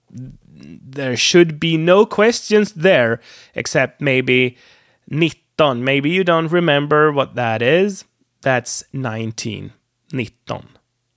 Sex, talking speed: male, 100 wpm